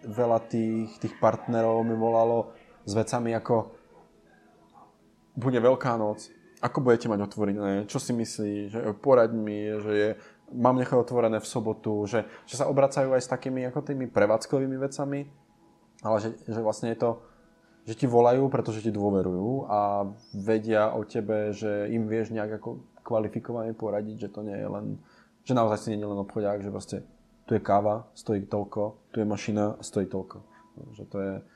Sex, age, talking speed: male, 20-39, 165 wpm